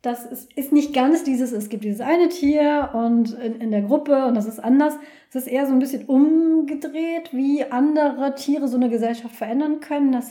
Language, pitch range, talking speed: German, 235-290 Hz, 210 wpm